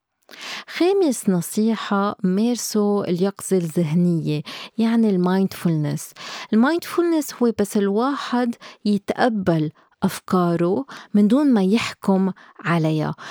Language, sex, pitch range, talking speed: Arabic, female, 175-225 Hz, 80 wpm